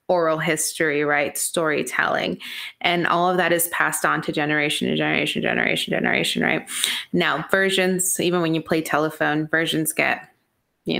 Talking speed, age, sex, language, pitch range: 160 wpm, 20-39, female, English, 160-185 Hz